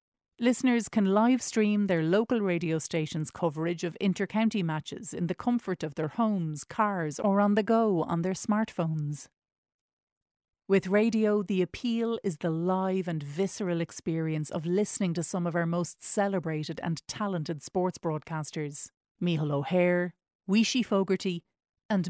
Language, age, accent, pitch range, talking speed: English, 40-59, Irish, 160-205 Hz, 145 wpm